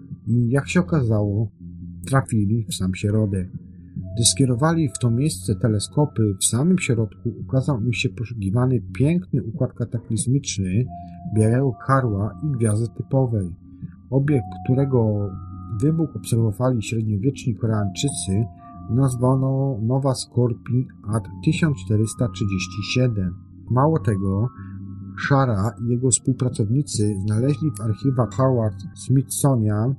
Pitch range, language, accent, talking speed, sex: 105-135 Hz, Polish, native, 100 wpm, male